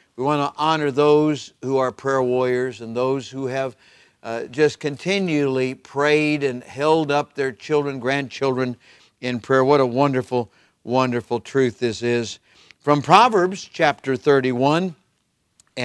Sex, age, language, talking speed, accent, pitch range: male, 60-79, English, 135 wpm, American, 120-145 Hz